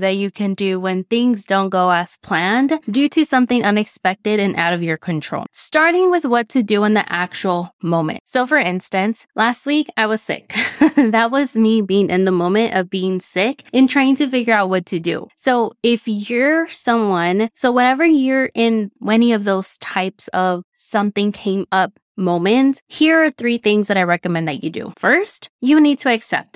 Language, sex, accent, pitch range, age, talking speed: English, female, American, 190-245 Hz, 20-39, 195 wpm